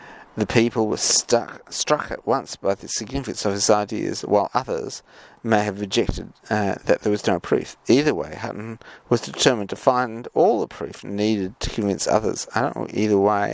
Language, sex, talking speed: English, male, 190 wpm